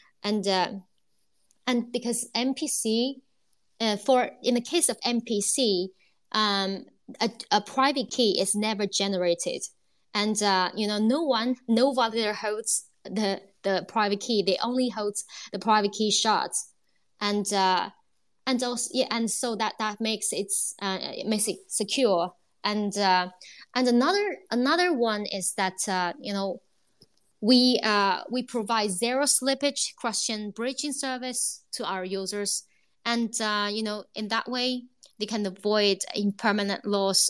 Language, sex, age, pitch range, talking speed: English, female, 20-39, 195-250 Hz, 150 wpm